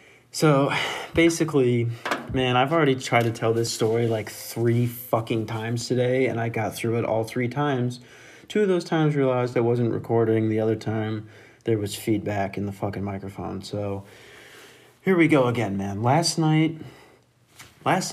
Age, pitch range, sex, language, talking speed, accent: 30-49, 110-135 Hz, male, English, 160 wpm, American